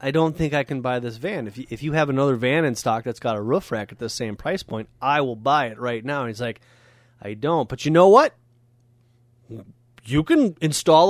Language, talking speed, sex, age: English, 240 wpm, male, 30-49